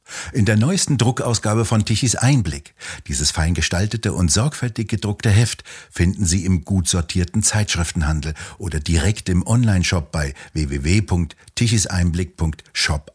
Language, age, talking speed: German, 60-79, 120 wpm